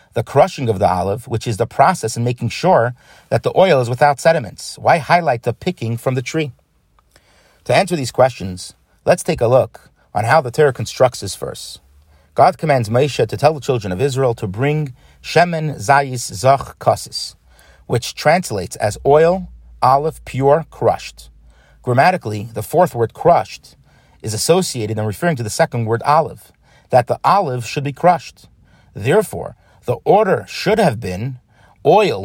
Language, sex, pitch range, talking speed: English, male, 110-150 Hz, 165 wpm